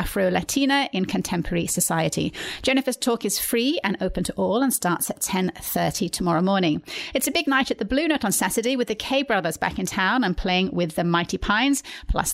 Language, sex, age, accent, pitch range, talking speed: English, female, 30-49, British, 180-255 Hz, 205 wpm